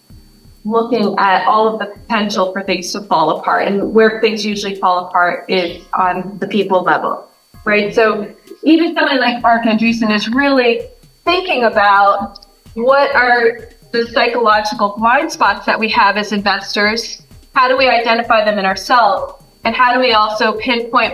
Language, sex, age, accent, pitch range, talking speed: English, female, 30-49, American, 205-245 Hz, 160 wpm